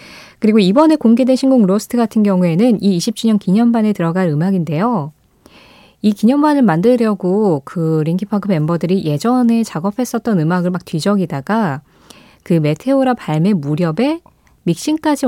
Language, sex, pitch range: Korean, female, 165-235 Hz